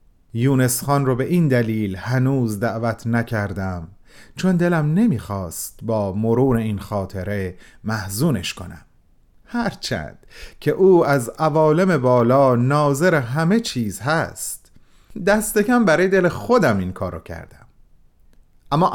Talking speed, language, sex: 115 wpm, Persian, male